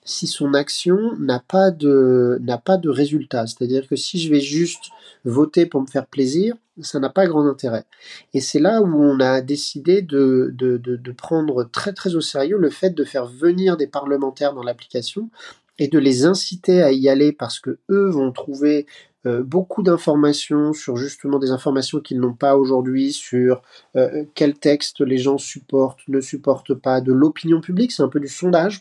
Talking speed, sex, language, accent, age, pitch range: 190 wpm, male, English, French, 40-59, 135-170 Hz